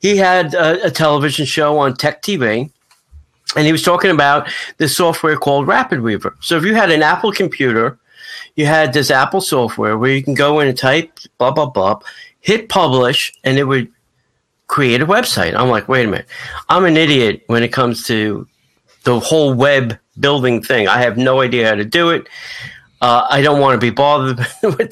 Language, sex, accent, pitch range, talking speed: English, male, American, 125-160 Hz, 195 wpm